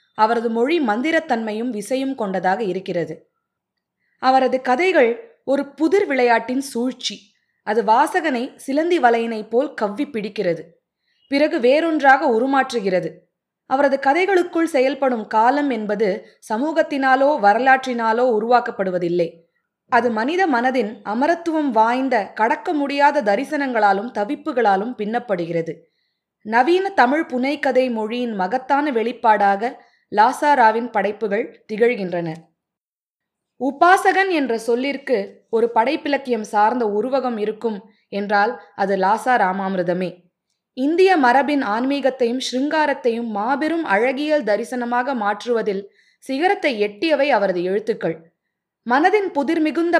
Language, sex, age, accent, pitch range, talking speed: Tamil, female, 20-39, native, 210-280 Hz, 90 wpm